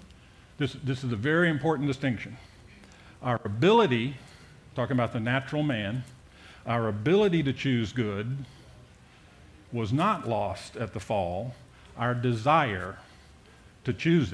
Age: 50-69